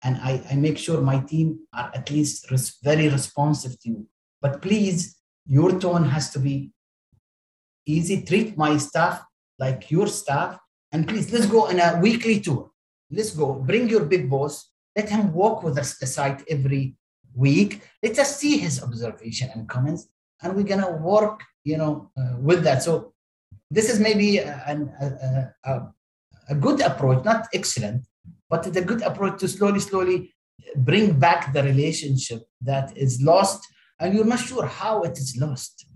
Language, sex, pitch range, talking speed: Arabic, male, 135-180 Hz, 170 wpm